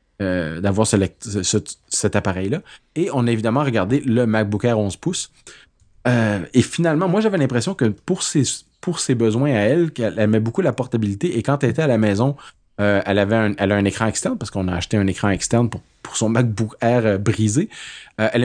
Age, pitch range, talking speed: 30-49, 105-130 Hz, 220 wpm